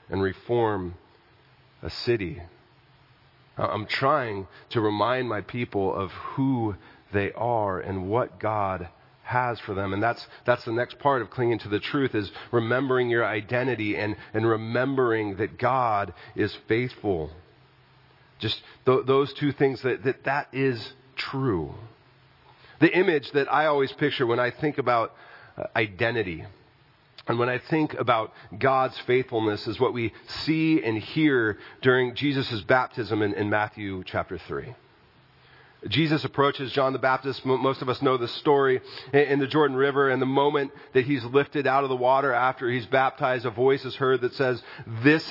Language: English